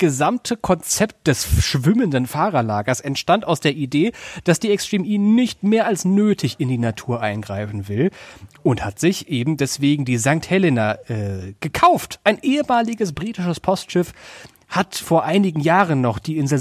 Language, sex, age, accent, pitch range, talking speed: German, male, 30-49, German, 130-180 Hz, 160 wpm